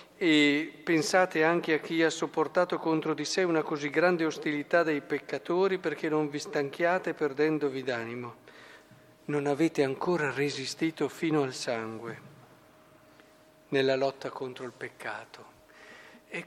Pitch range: 145-185 Hz